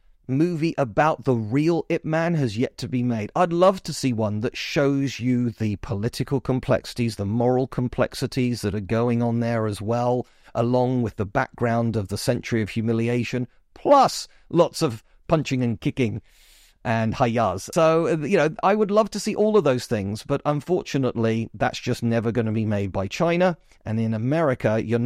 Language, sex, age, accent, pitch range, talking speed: English, male, 40-59, British, 115-145 Hz, 180 wpm